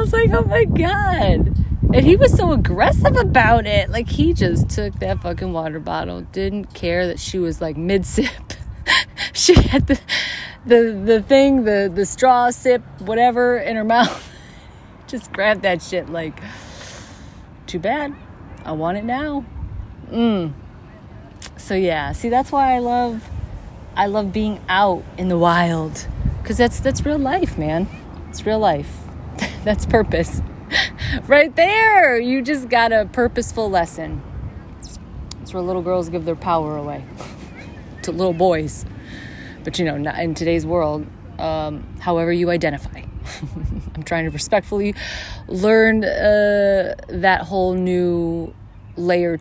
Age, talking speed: 30-49, 150 wpm